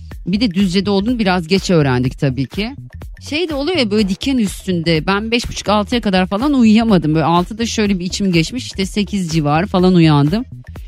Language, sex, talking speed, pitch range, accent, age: Turkish, female, 180 wpm, 165-220 Hz, native, 30-49